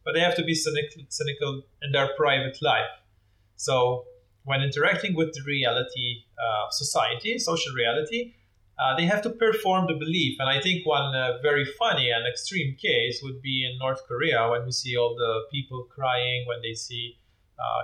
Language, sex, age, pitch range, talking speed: English, male, 30-49, 120-150 Hz, 185 wpm